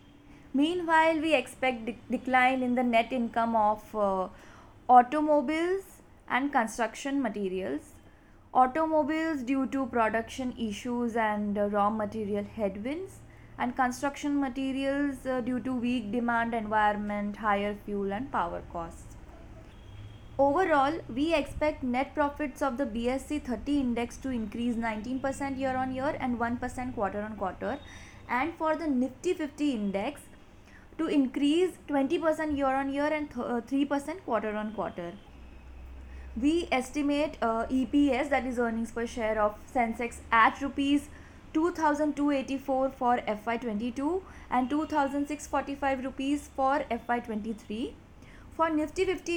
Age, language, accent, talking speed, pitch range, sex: 20-39, English, Indian, 125 wpm, 225-285 Hz, female